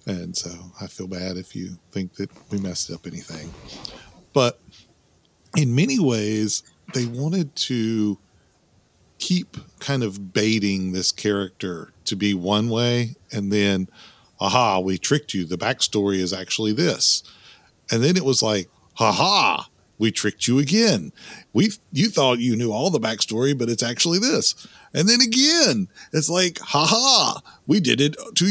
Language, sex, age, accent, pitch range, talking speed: English, male, 40-59, American, 110-180 Hz, 160 wpm